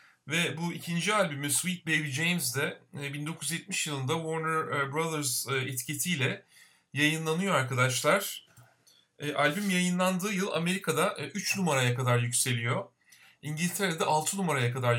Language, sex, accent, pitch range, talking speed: Turkish, male, native, 135-175 Hz, 105 wpm